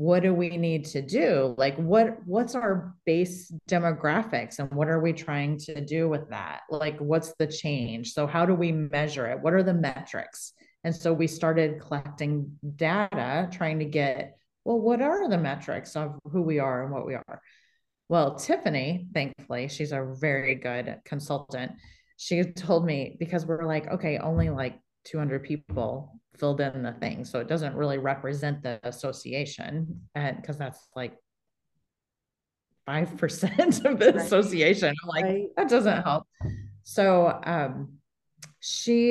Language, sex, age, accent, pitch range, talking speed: English, female, 30-49, American, 140-170 Hz, 155 wpm